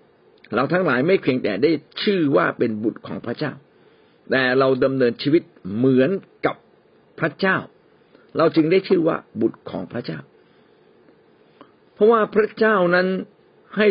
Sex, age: male, 60-79